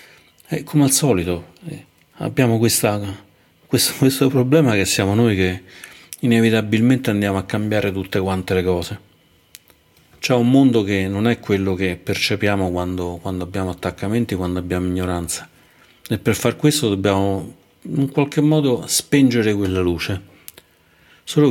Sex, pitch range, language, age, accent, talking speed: male, 90-115 Hz, Italian, 40-59, native, 130 wpm